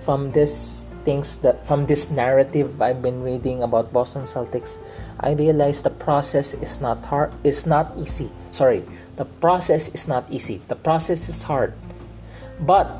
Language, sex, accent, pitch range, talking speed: English, male, Filipino, 115-150 Hz, 155 wpm